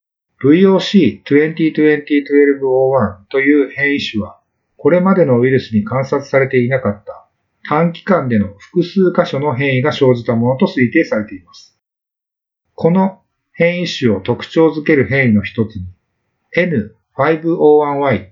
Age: 50-69